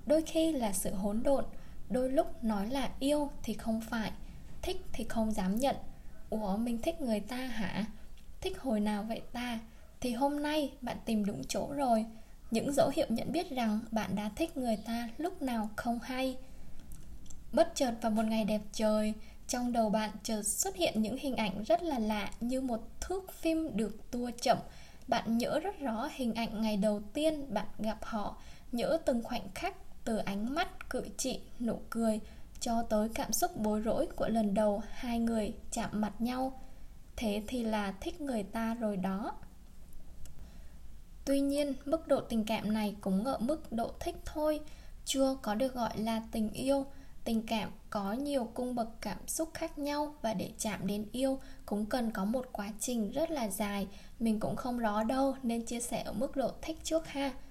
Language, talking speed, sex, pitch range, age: Vietnamese, 190 wpm, female, 215-275 Hz, 10-29